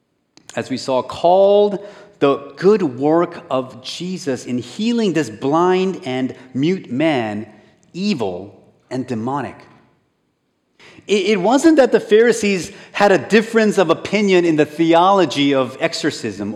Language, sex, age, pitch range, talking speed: English, male, 40-59, 140-205 Hz, 125 wpm